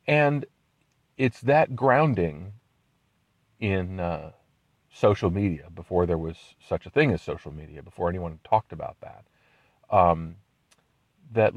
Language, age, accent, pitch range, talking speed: English, 40-59, American, 85-110 Hz, 125 wpm